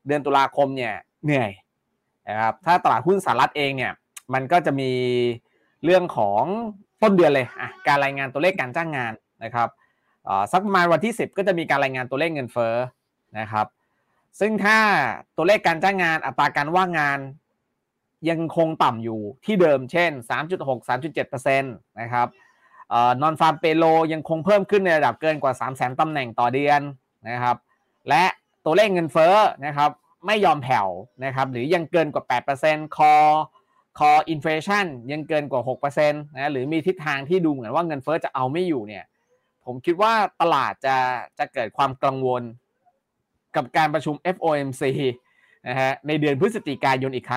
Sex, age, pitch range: male, 20-39, 130-170 Hz